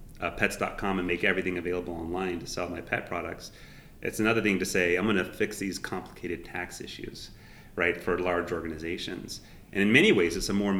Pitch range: 90-105 Hz